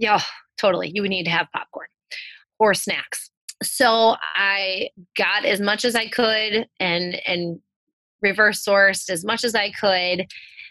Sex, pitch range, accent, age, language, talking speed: female, 180-225 Hz, American, 20-39, English, 150 wpm